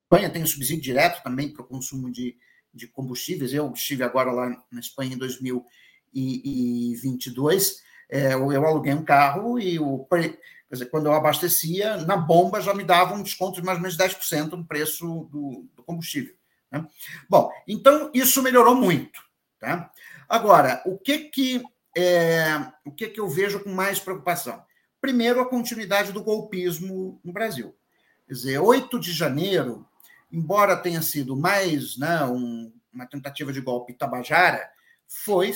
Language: Portuguese